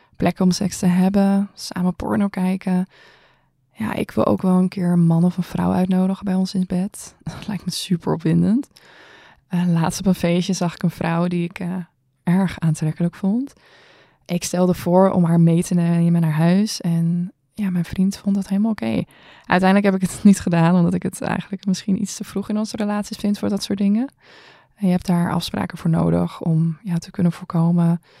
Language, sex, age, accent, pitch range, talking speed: Dutch, female, 20-39, Dutch, 170-200 Hz, 200 wpm